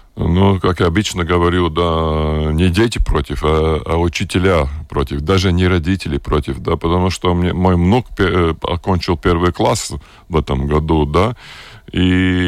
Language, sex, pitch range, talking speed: Russian, male, 80-105 Hz, 155 wpm